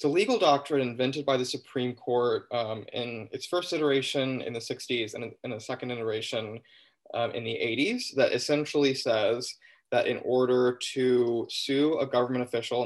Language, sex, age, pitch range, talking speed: English, male, 20-39, 120-145 Hz, 170 wpm